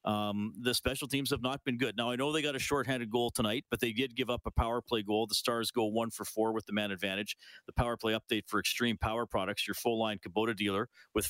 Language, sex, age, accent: English, male, 40-59, American